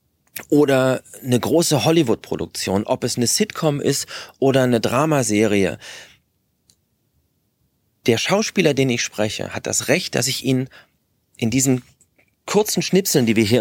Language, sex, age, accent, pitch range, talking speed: German, male, 30-49, German, 125-150 Hz, 130 wpm